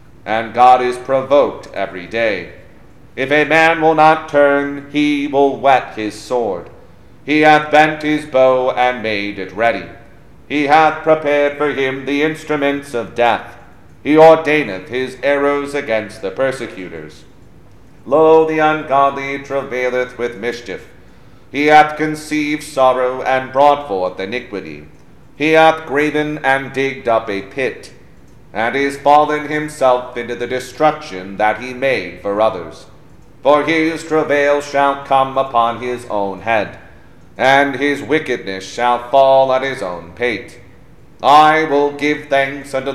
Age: 40-59